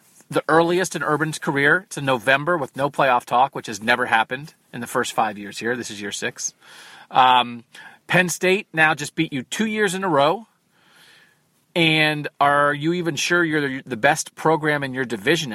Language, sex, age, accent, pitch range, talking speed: English, male, 40-59, American, 130-170 Hz, 190 wpm